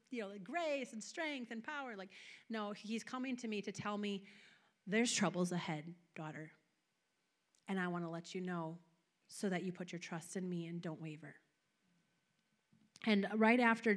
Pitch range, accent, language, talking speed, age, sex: 180-220 Hz, American, English, 175 wpm, 30-49, female